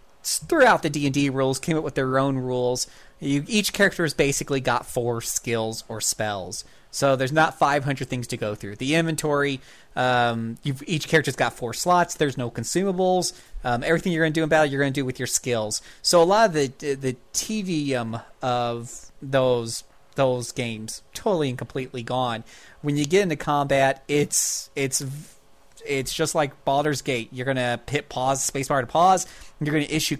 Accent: American